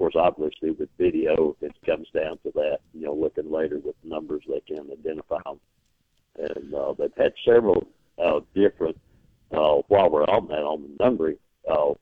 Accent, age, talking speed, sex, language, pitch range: American, 60-79, 185 wpm, male, English, 340-460 Hz